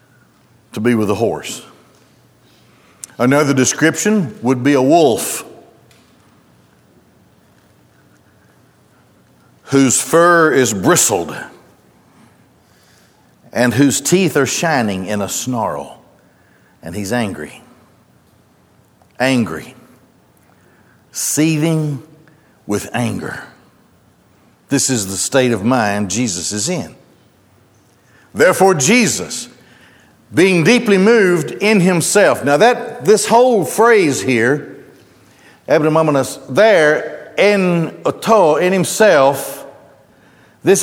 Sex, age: male, 60-79